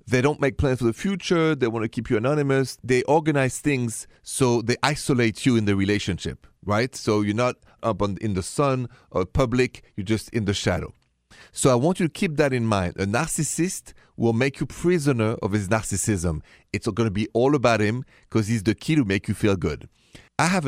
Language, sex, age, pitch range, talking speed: English, male, 40-59, 100-135 Hz, 215 wpm